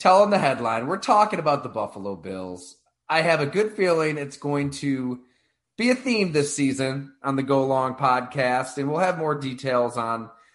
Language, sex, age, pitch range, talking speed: English, male, 30-49, 105-150 Hz, 195 wpm